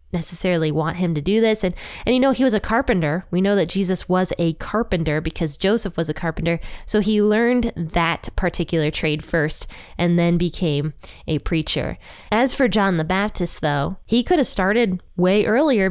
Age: 20-39